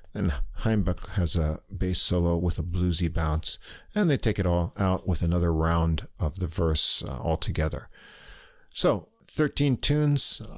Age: 50-69